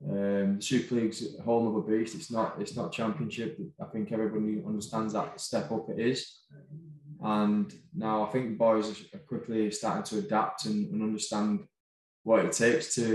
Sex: male